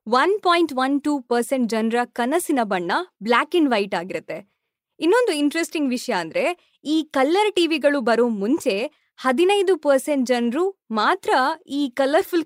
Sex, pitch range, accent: female, 230-320 Hz, native